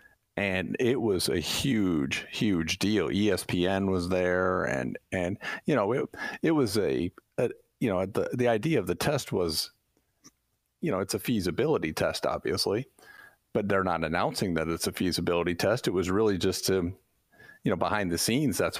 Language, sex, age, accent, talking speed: English, male, 40-59, American, 175 wpm